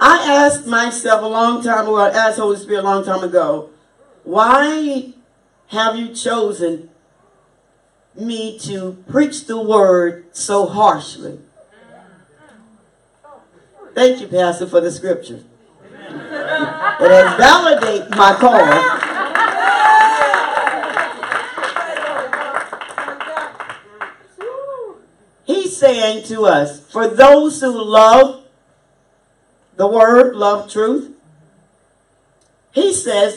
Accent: American